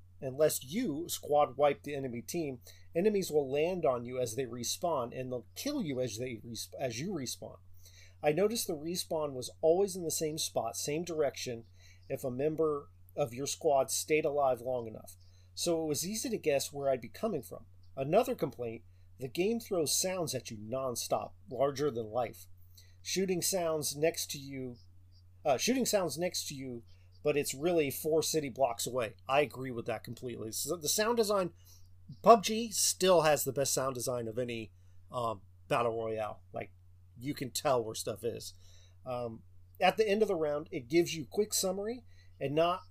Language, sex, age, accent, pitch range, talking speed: English, male, 40-59, American, 100-160 Hz, 180 wpm